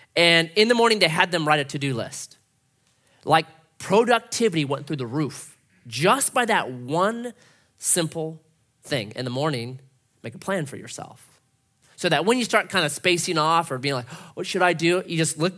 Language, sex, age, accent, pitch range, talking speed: English, male, 30-49, American, 130-185 Hz, 195 wpm